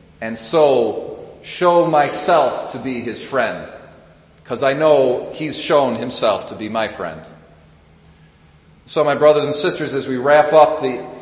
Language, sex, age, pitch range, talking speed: English, male, 40-59, 125-160 Hz, 150 wpm